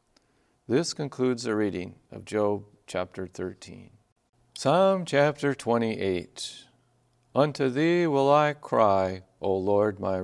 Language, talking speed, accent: English, 110 wpm, American